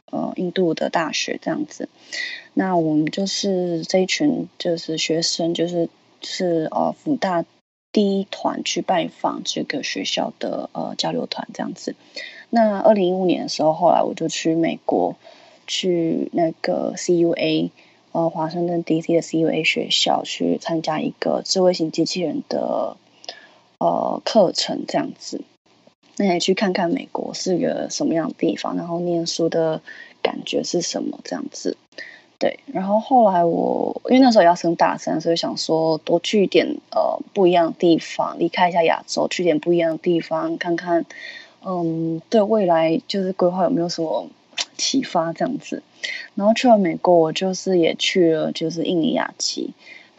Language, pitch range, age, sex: Chinese, 165-230 Hz, 20-39, female